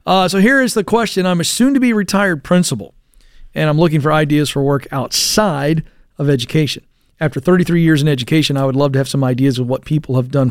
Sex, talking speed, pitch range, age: male, 210 wpm, 145-185 Hz, 40-59